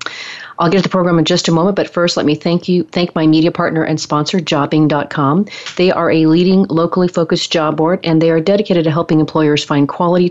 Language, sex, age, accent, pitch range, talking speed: English, female, 40-59, American, 145-170 Hz, 220 wpm